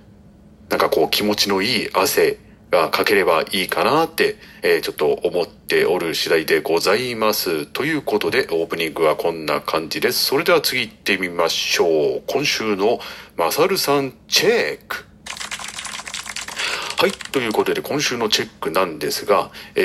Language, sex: Japanese, male